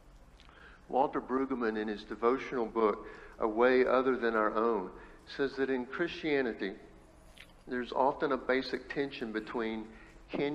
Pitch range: 100-130 Hz